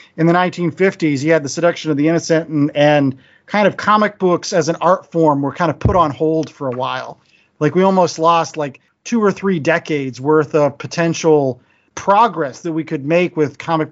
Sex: male